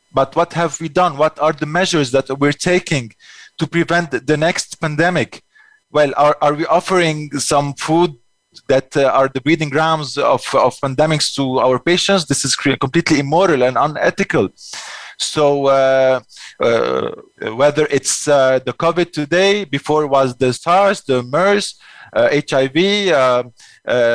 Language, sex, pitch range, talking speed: English, male, 135-170 Hz, 150 wpm